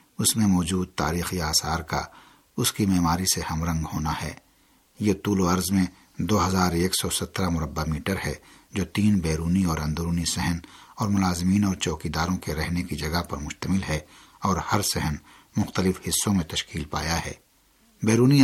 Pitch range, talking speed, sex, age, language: 80-100 Hz, 175 wpm, male, 60-79, Urdu